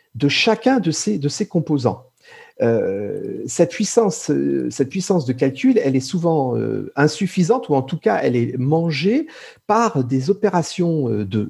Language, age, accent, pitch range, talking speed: French, 50-69, French, 120-195 Hz, 150 wpm